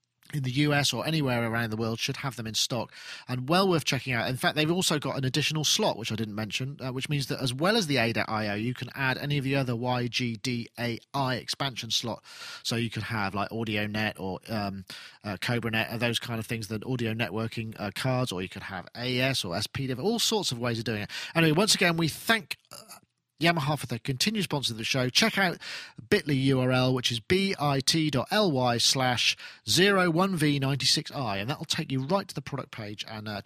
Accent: British